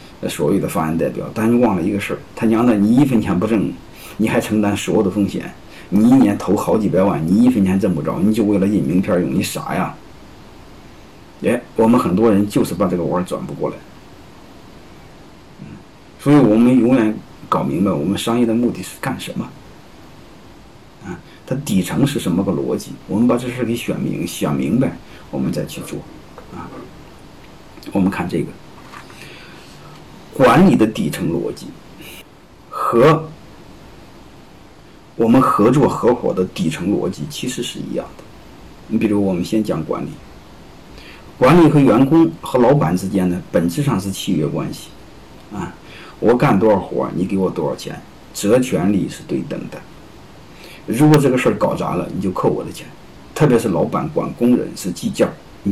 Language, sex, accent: Chinese, male, native